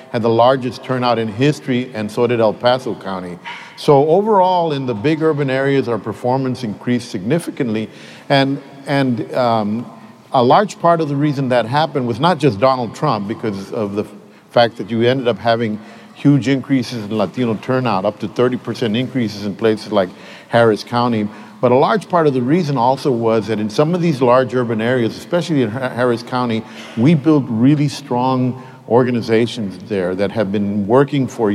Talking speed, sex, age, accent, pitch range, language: 185 wpm, male, 50-69, American, 110-135 Hz, English